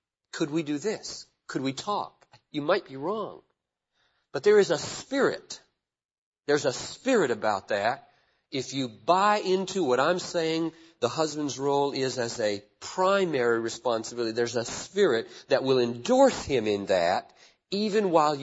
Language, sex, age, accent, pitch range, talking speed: English, male, 40-59, American, 120-175 Hz, 155 wpm